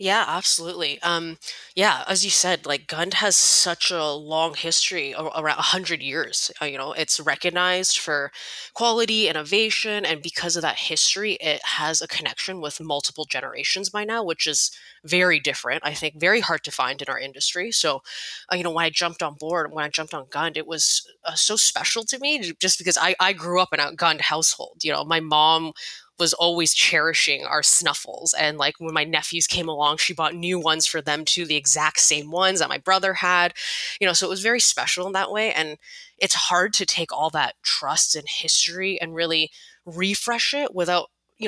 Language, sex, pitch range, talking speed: English, female, 155-185 Hz, 205 wpm